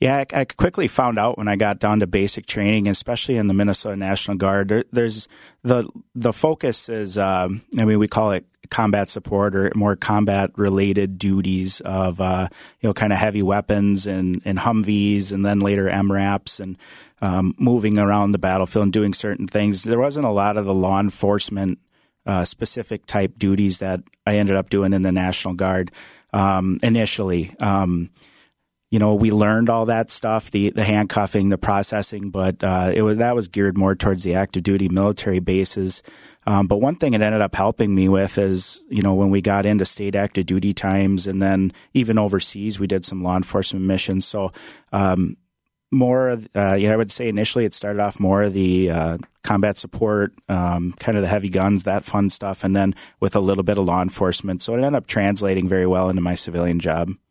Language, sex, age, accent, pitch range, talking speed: English, male, 30-49, American, 95-105 Hz, 200 wpm